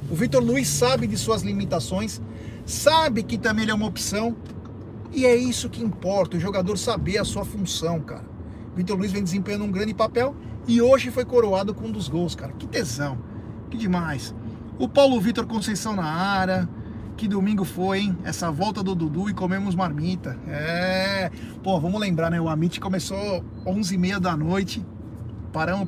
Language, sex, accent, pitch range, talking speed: Portuguese, male, Brazilian, 160-195 Hz, 175 wpm